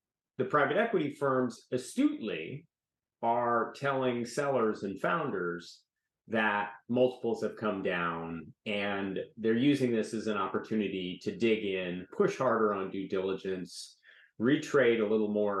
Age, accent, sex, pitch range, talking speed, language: 30-49, American, male, 100-130 Hz, 130 wpm, English